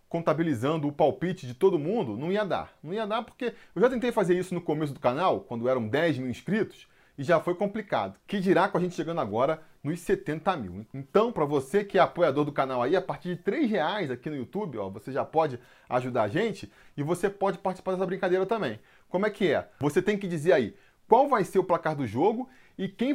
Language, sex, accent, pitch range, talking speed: Portuguese, male, Brazilian, 150-210 Hz, 235 wpm